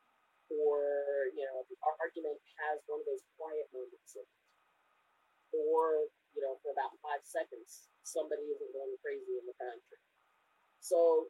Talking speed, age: 150 wpm, 40-59